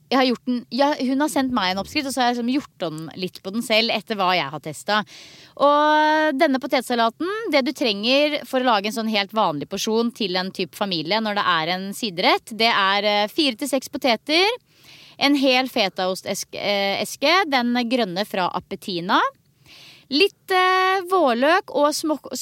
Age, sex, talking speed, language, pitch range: 30-49, female, 170 wpm, English, 210-290 Hz